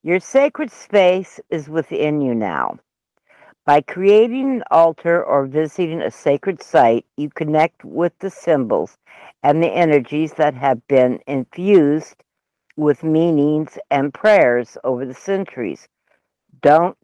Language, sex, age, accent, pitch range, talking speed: English, female, 60-79, American, 135-175 Hz, 125 wpm